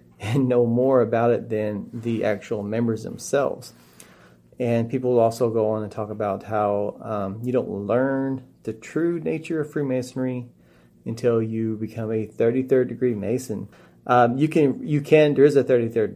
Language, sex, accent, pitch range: English, male, American, 110-130 Hz